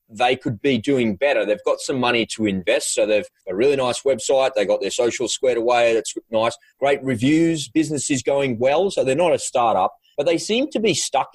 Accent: Australian